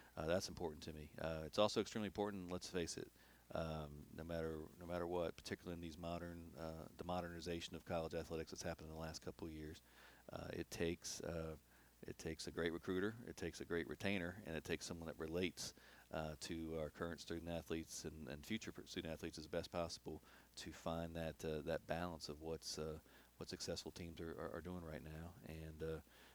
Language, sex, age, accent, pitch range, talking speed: English, male, 40-59, American, 80-85 Hz, 205 wpm